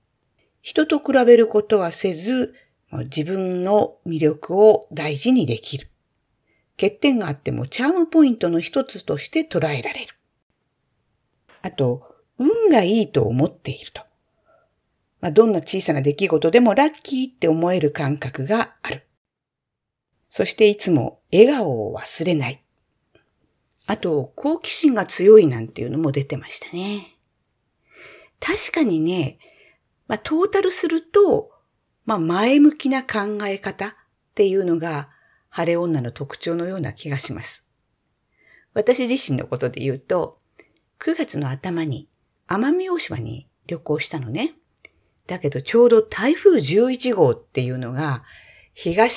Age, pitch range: 50-69, 145-245 Hz